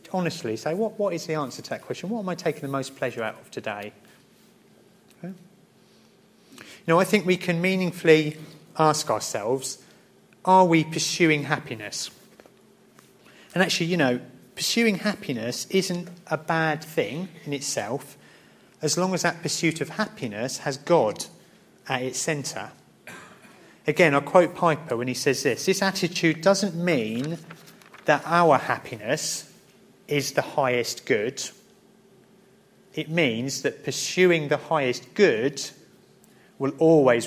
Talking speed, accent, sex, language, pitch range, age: 140 wpm, British, male, English, 135-185 Hz, 30-49